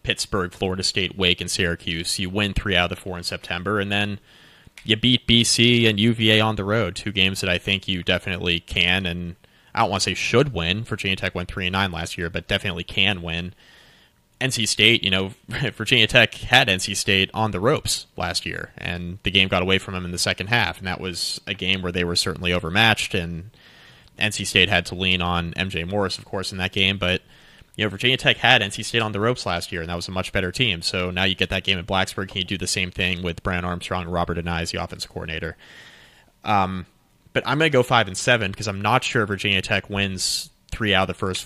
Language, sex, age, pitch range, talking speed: English, male, 20-39, 90-110 Hz, 240 wpm